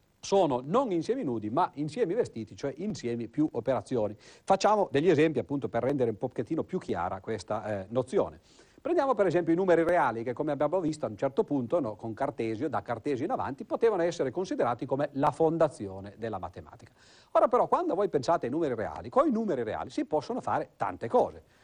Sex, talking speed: male, 190 wpm